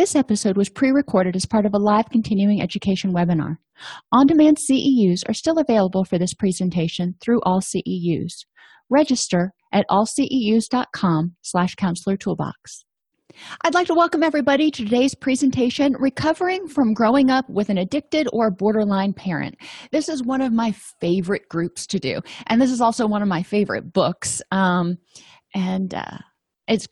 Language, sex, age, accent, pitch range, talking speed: English, female, 30-49, American, 190-240 Hz, 155 wpm